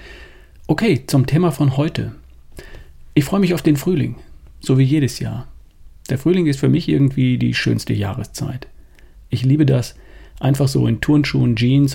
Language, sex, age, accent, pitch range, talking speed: German, male, 40-59, German, 105-135 Hz, 160 wpm